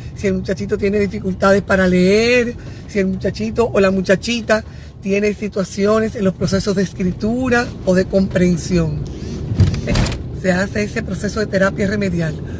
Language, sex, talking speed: Spanish, female, 145 wpm